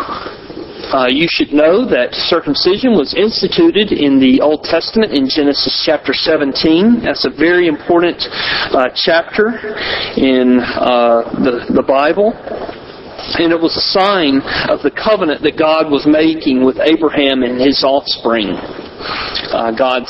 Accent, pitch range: American, 130-185 Hz